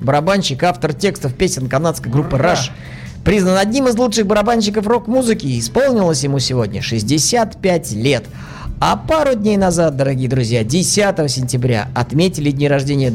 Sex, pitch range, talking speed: male, 115-170 Hz, 135 wpm